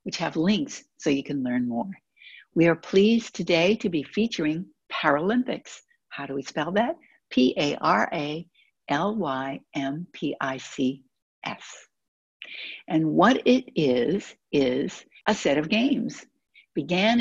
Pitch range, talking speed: 150-215 Hz, 110 wpm